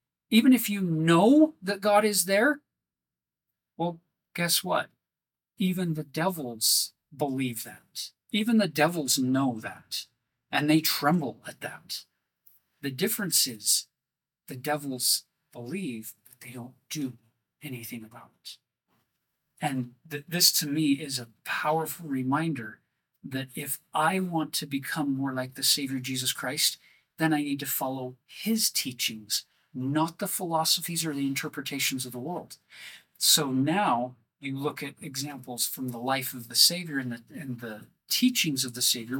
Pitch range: 130-185 Hz